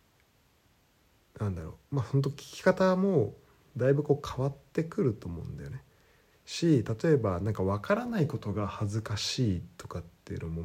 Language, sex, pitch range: Japanese, male, 100-150 Hz